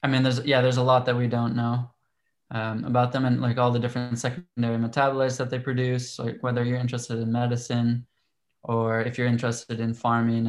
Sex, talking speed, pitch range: male, 205 wpm, 115-130 Hz